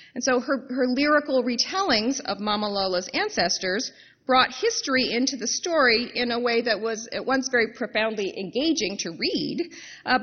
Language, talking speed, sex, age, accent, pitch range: English, 165 wpm, female, 30-49, American, 190-265 Hz